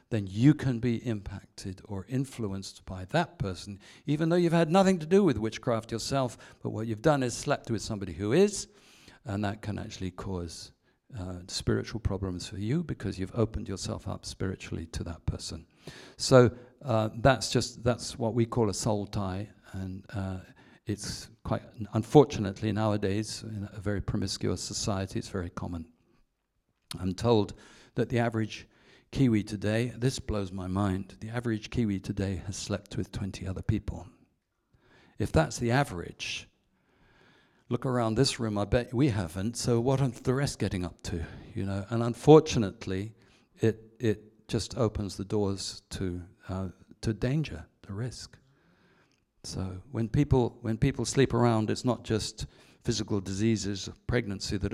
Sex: male